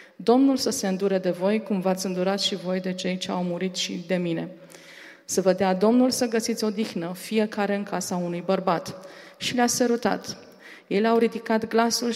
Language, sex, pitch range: Romanian, female, 190-230 Hz